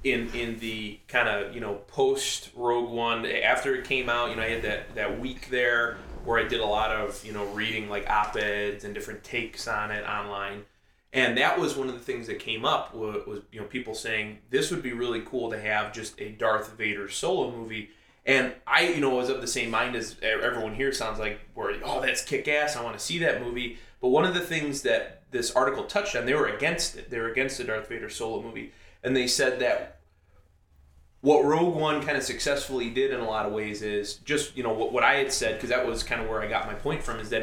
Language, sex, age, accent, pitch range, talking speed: English, male, 20-39, American, 110-135 Hz, 245 wpm